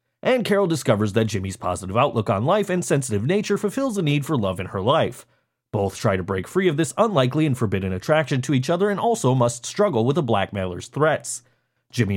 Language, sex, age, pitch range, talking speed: English, male, 30-49, 110-155 Hz, 210 wpm